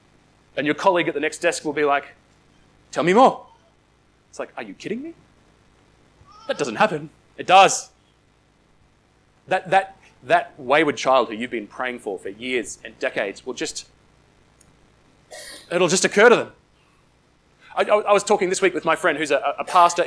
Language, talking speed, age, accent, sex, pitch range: English, 175 wpm, 30-49, Australian, male, 145-210 Hz